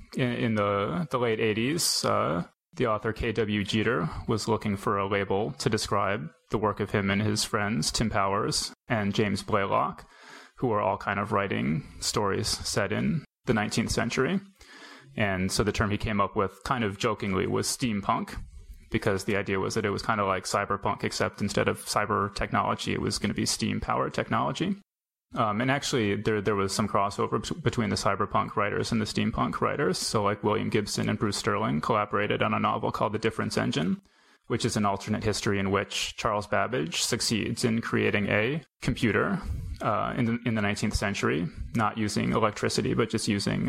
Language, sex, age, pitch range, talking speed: English, male, 20-39, 100-115 Hz, 185 wpm